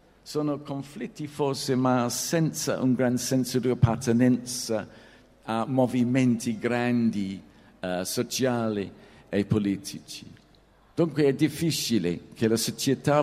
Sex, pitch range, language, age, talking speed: male, 105-130 Hz, Italian, 50-69, 100 wpm